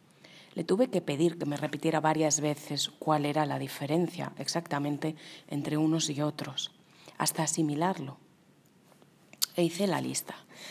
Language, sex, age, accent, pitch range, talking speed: Spanish, female, 30-49, Spanish, 145-180 Hz, 135 wpm